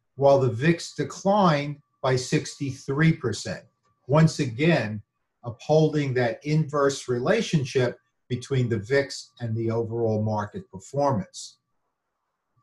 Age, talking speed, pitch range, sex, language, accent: 50-69, 95 wpm, 120-145 Hz, male, English, American